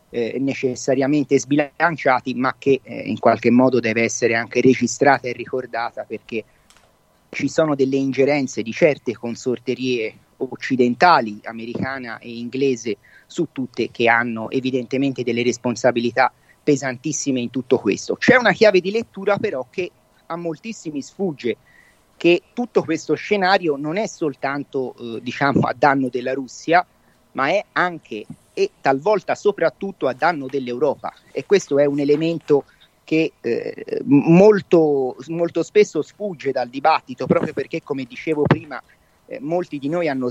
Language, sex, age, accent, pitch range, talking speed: Italian, male, 40-59, native, 125-155 Hz, 140 wpm